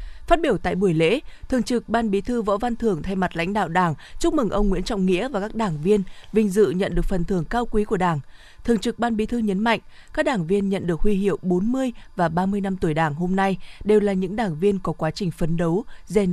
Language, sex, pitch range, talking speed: Vietnamese, female, 180-225 Hz, 260 wpm